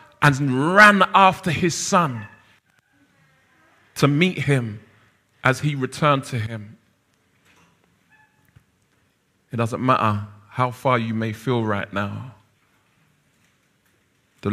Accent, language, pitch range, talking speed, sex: British, English, 110-150 Hz, 100 wpm, male